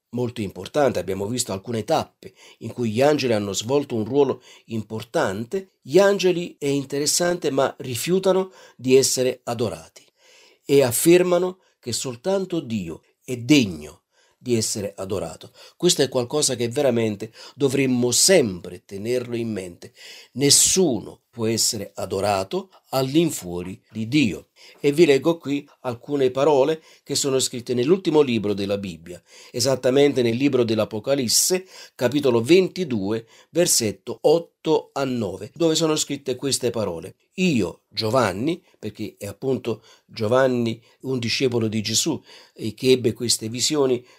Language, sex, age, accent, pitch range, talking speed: Italian, male, 50-69, native, 115-145 Hz, 130 wpm